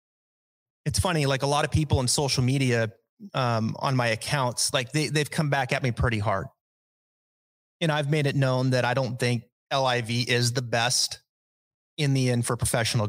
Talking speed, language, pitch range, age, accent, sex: 185 wpm, English, 120-145 Hz, 30-49, American, male